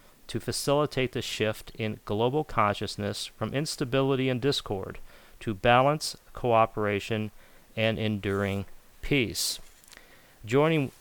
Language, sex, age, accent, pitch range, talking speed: English, male, 40-59, American, 105-120 Hz, 100 wpm